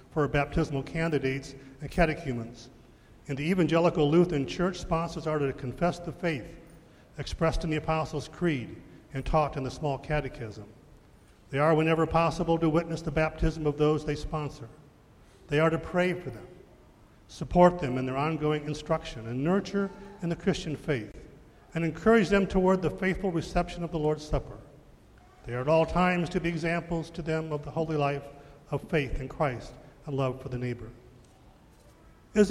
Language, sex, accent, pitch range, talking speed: English, male, American, 135-170 Hz, 170 wpm